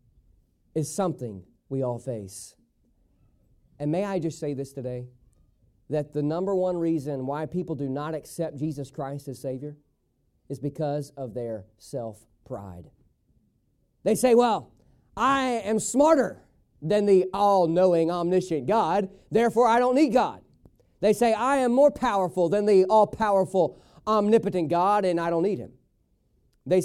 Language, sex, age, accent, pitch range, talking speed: English, male, 40-59, American, 160-250 Hz, 150 wpm